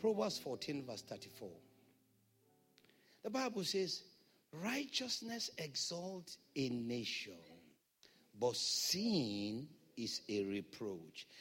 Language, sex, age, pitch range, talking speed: English, male, 60-79, 140-235 Hz, 85 wpm